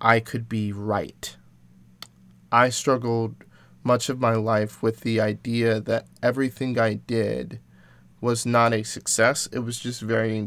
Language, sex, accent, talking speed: English, male, American, 145 wpm